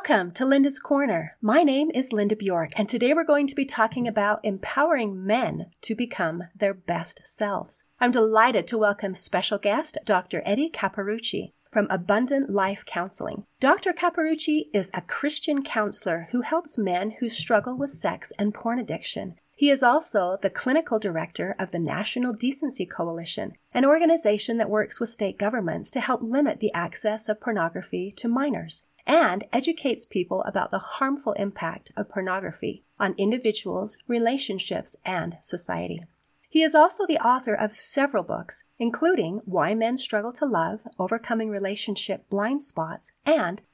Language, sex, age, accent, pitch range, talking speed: English, female, 40-59, American, 200-275 Hz, 155 wpm